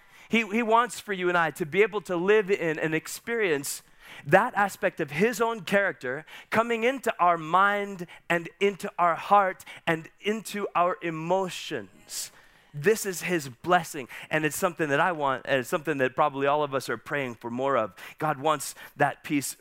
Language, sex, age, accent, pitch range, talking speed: English, male, 30-49, American, 160-215 Hz, 185 wpm